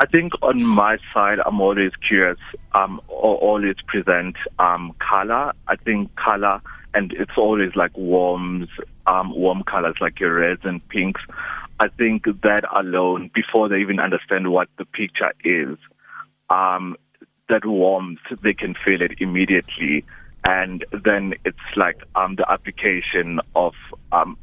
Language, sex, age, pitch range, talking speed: English, male, 30-49, 90-100 Hz, 140 wpm